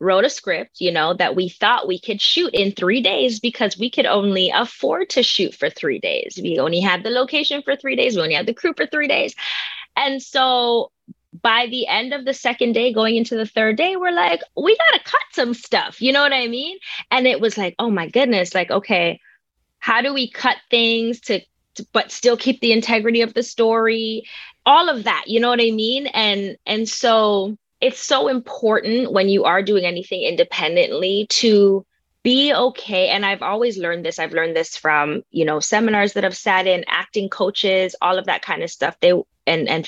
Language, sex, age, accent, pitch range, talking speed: English, female, 20-39, American, 195-255 Hz, 210 wpm